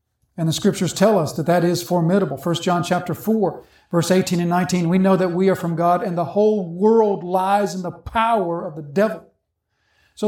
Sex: male